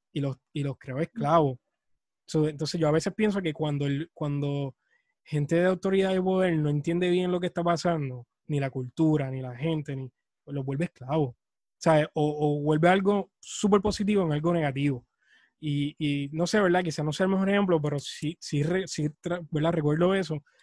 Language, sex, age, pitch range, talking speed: Spanish, male, 20-39, 140-170 Hz, 190 wpm